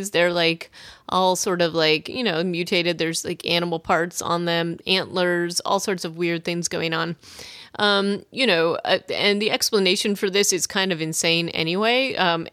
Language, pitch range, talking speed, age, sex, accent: English, 170-195 Hz, 175 wpm, 30-49, female, American